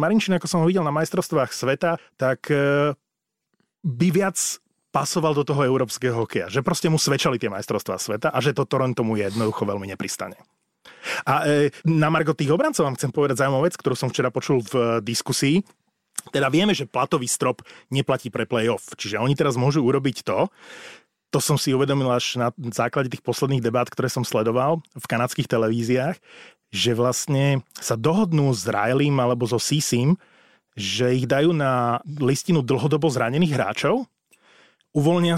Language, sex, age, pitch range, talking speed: Slovak, male, 30-49, 125-160 Hz, 160 wpm